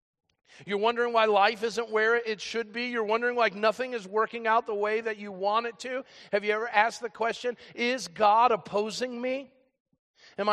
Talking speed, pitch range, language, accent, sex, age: 195 wpm, 180-230 Hz, English, American, male, 40-59